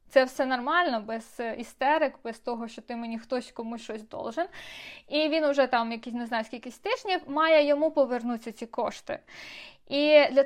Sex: female